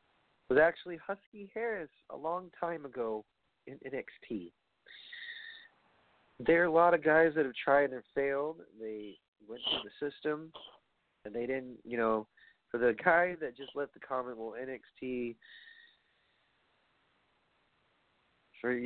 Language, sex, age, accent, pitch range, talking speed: English, male, 40-59, American, 110-150 Hz, 135 wpm